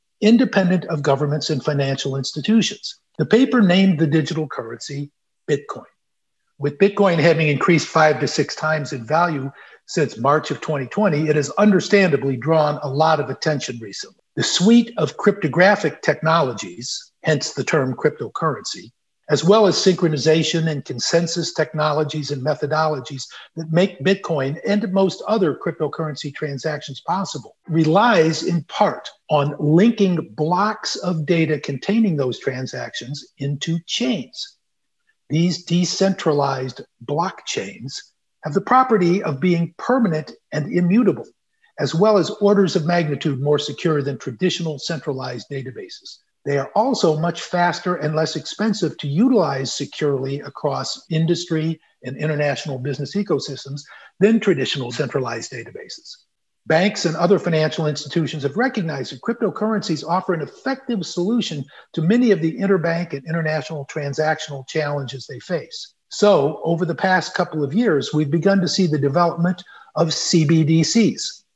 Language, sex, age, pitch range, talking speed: English, male, 50-69, 145-195 Hz, 135 wpm